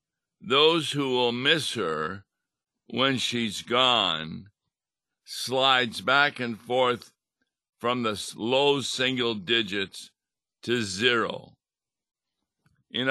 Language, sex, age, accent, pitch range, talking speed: English, male, 60-79, American, 105-130 Hz, 90 wpm